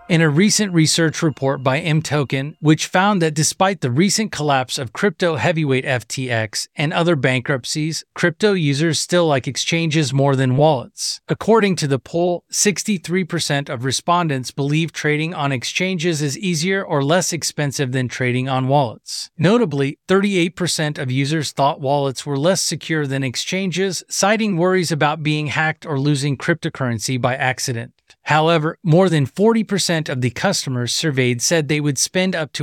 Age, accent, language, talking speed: 30-49, American, English, 155 wpm